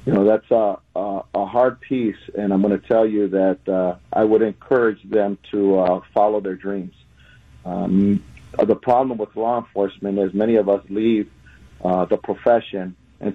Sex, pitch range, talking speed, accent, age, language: male, 90-105 Hz, 180 wpm, American, 50-69, English